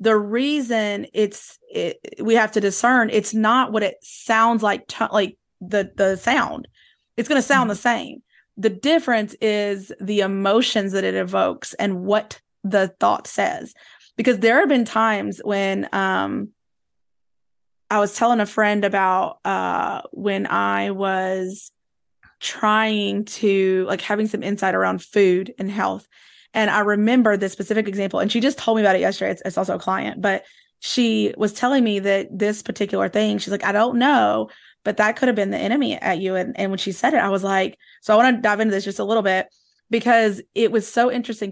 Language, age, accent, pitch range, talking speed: English, 20-39, American, 200-230 Hz, 190 wpm